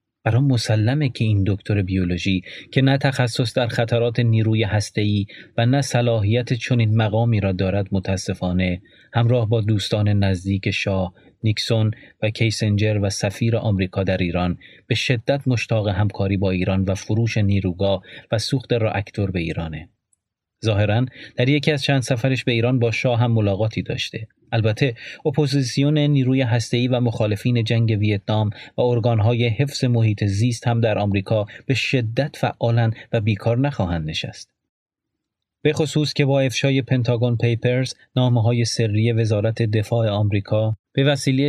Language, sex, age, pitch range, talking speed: Persian, male, 30-49, 100-125 Hz, 145 wpm